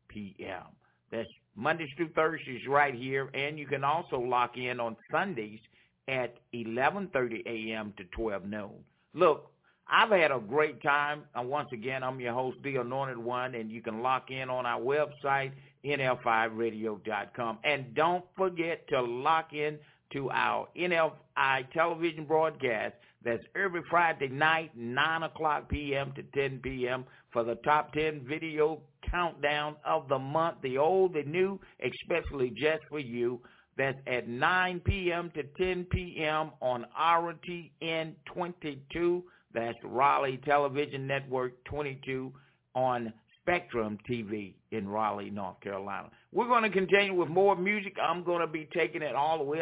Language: English